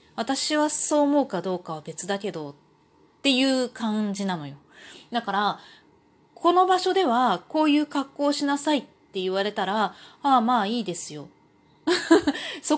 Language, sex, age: Japanese, female, 30-49